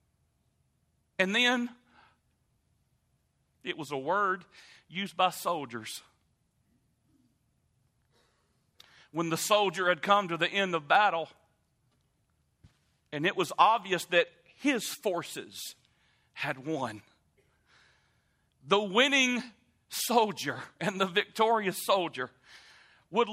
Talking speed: 95 wpm